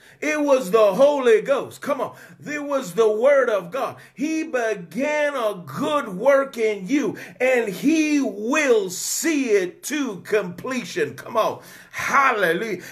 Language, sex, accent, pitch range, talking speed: English, male, American, 210-285 Hz, 140 wpm